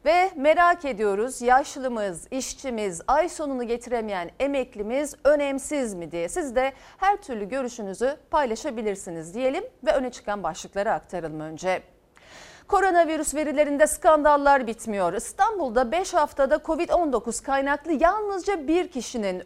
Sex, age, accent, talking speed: female, 40-59, native, 115 wpm